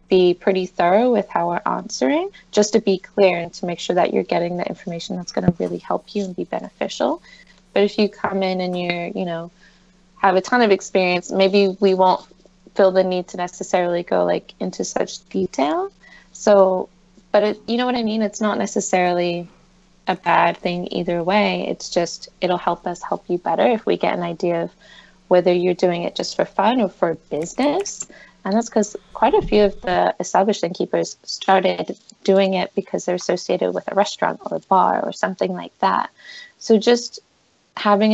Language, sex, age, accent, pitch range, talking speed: English, female, 20-39, American, 180-210 Hz, 195 wpm